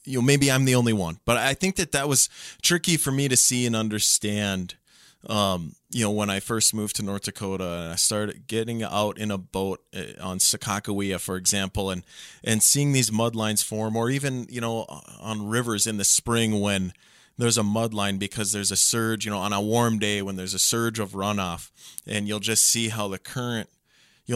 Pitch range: 100-120 Hz